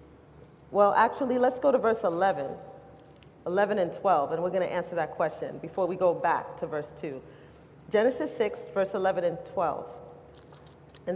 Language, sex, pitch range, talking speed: English, female, 180-235 Hz, 165 wpm